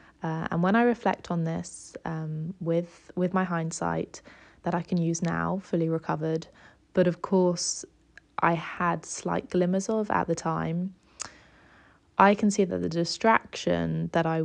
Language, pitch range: English, 160-190 Hz